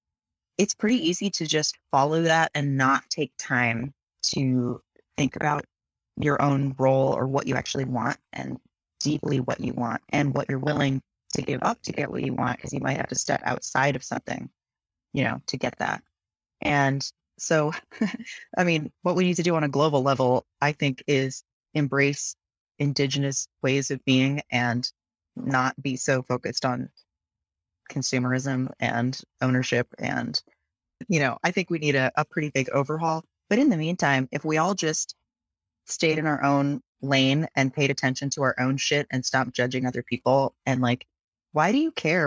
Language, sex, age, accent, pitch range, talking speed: English, female, 30-49, American, 130-150 Hz, 180 wpm